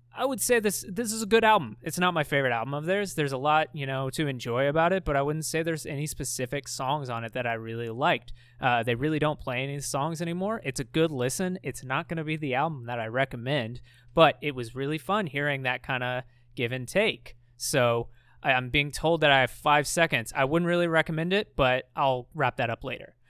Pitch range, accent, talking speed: 130-170 Hz, American, 235 wpm